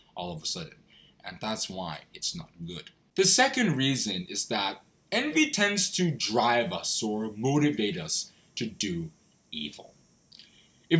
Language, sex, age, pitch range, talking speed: English, male, 20-39, 125-180 Hz, 145 wpm